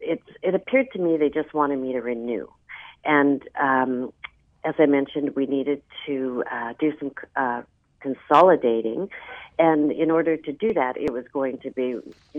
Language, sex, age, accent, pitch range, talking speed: English, female, 50-69, American, 125-155 Hz, 175 wpm